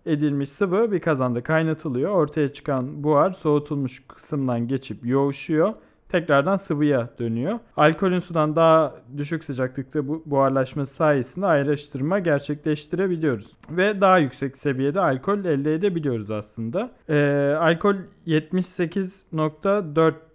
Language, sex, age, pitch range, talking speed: Turkish, male, 40-59, 135-185 Hz, 105 wpm